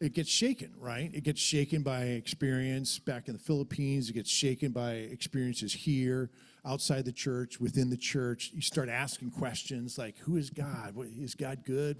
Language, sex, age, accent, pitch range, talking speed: English, male, 40-59, American, 125-165 Hz, 180 wpm